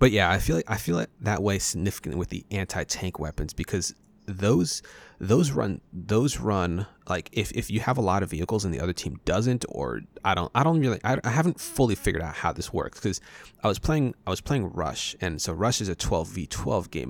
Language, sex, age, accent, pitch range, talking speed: English, male, 30-49, American, 90-110 Hz, 240 wpm